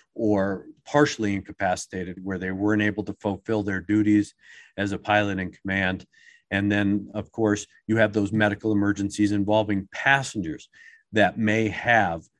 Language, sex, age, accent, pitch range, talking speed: English, male, 50-69, American, 95-105 Hz, 145 wpm